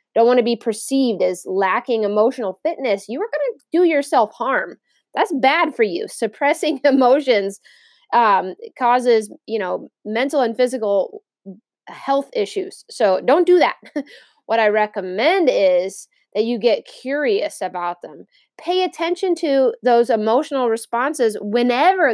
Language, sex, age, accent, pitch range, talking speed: English, female, 20-39, American, 210-285 Hz, 140 wpm